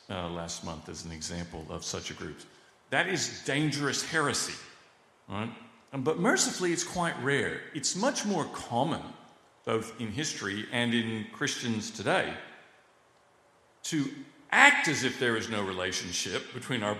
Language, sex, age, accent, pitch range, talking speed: English, male, 50-69, American, 95-145 Hz, 145 wpm